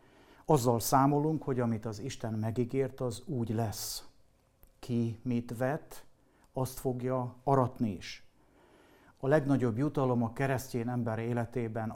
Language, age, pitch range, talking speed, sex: Hungarian, 60-79, 115-135 Hz, 120 wpm, male